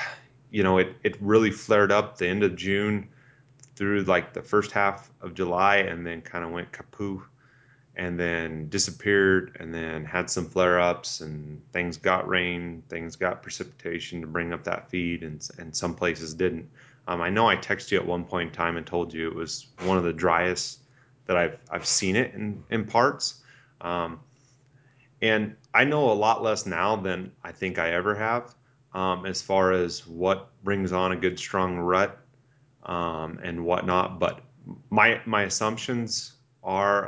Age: 30-49